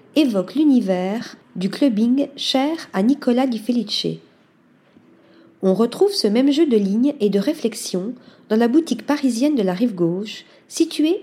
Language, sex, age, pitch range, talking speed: French, female, 40-59, 195-275 Hz, 150 wpm